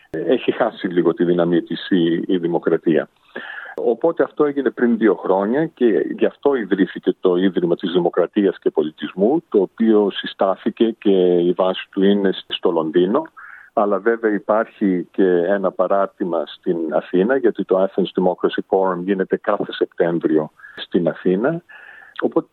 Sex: male